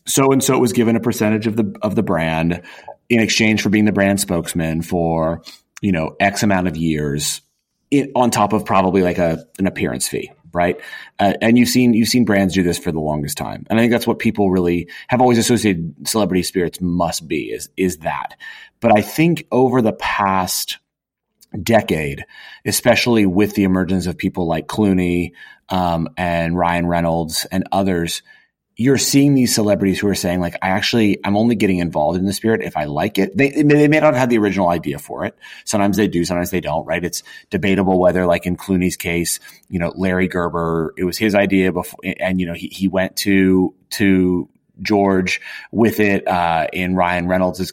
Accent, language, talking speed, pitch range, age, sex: American, English, 195 wpm, 90-105 Hz, 30-49, male